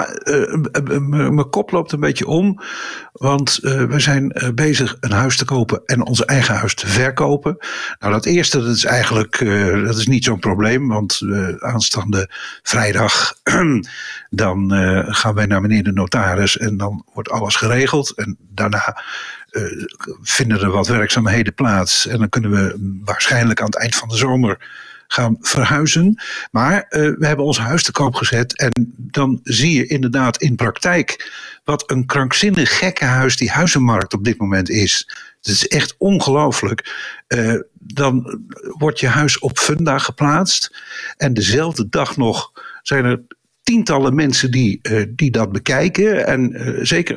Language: Dutch